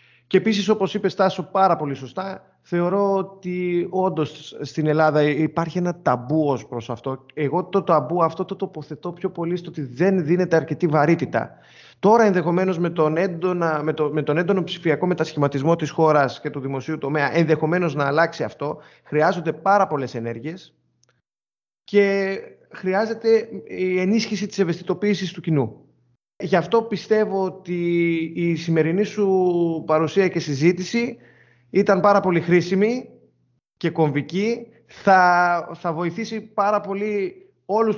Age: 30-49